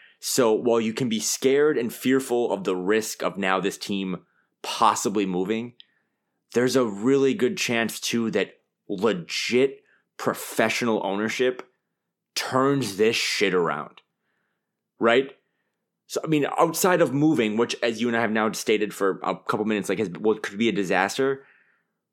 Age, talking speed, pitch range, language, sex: 20-39, 155 wpm, 100-125 Hz, English, male